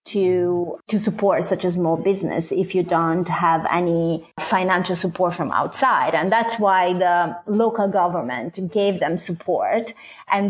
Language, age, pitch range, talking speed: English, 30-49, 175-205 Hz, 150 wpm